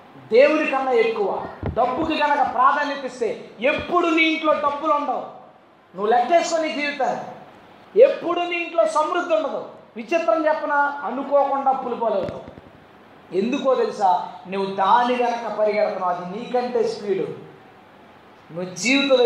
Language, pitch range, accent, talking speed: Telugu, 225-325 Hz, native, 110 wpm